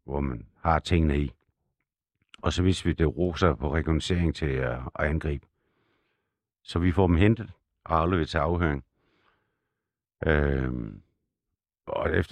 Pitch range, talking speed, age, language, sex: 80-105 Hz, 130 wpm, 60-79, Danish, male